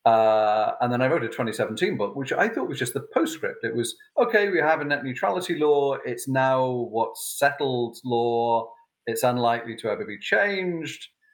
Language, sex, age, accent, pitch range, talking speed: English, male, 40-59, British, 115-165 Hz, 185 wpm